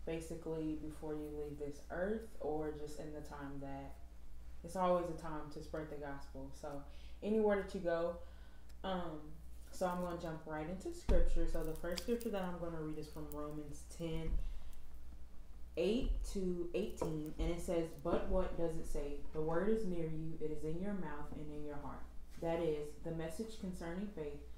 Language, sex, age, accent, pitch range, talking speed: English, female, 20-39, American, 145-170 Hz, 190 wpm